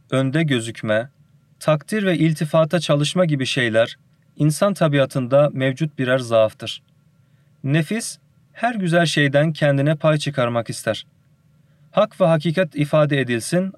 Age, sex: 40-59, male